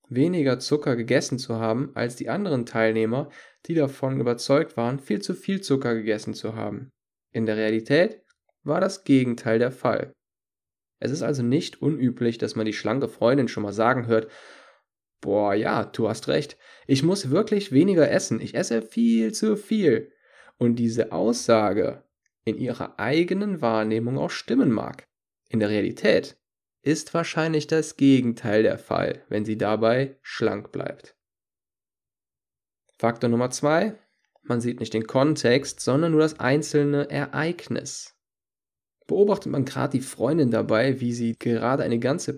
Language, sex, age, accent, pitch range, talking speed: German, male, 10-29, German, 115-145 Hz, 150 wpm